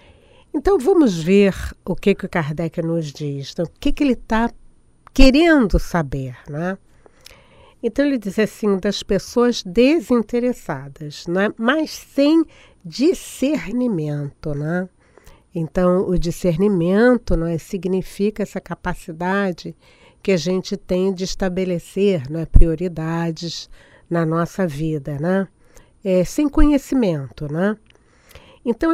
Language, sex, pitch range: Portuguese, female, 165-235 Hz